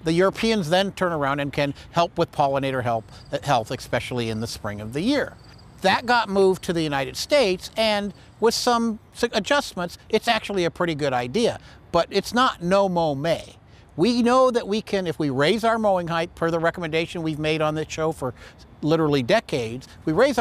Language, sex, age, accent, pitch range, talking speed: English, male, 60-79, American, 150-200 Hz, 195 wpm